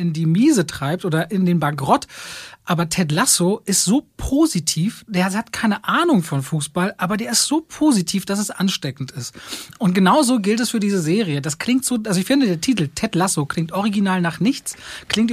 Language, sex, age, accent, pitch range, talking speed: German, male, 30-49, German, 175-225 Hz, 200 wpm